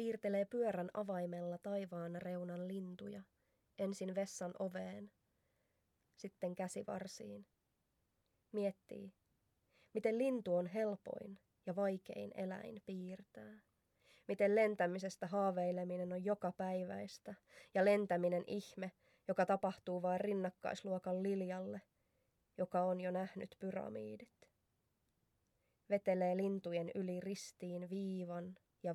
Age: 20-39